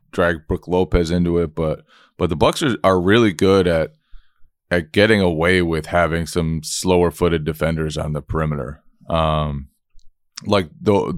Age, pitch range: 20-39, 80-90 Hz